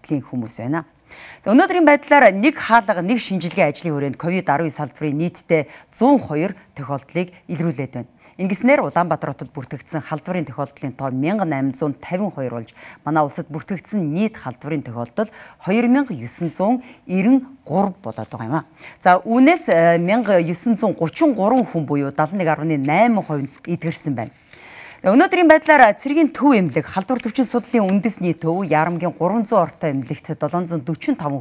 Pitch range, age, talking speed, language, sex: 145-210 Hz, 40-59, 75 wpm, English, female